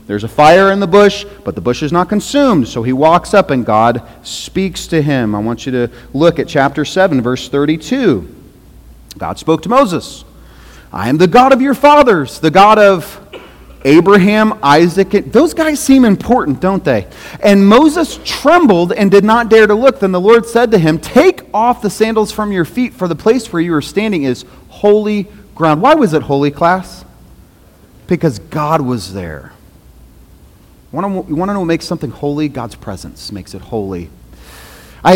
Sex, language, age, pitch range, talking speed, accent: male, English, 40-59, 125-200 Hz, 185 wpm, American